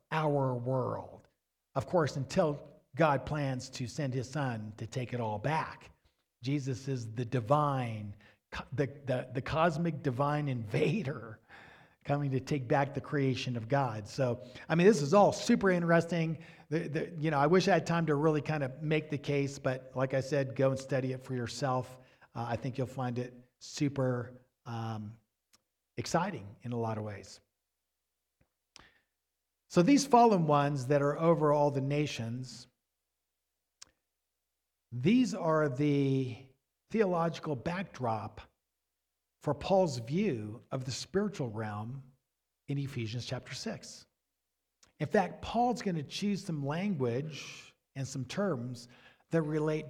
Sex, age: male, 50-69